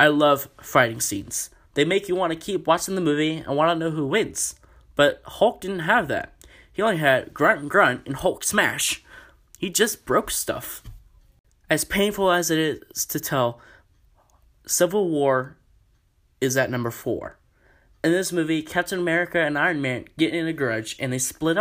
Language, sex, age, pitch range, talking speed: English, male, 20-39, 130-175 Hz, 180 wpm